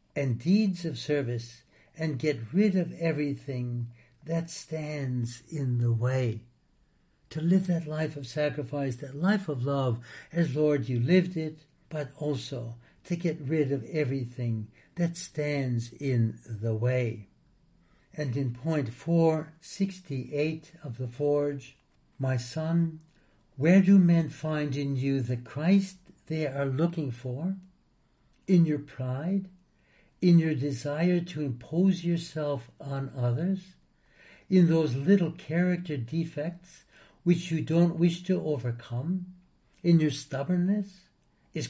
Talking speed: 125 wpm